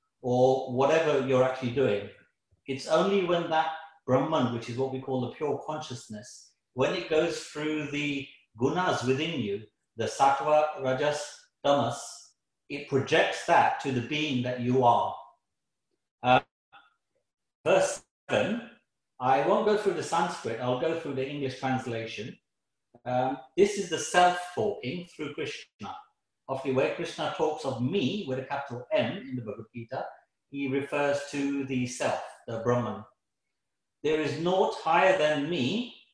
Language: English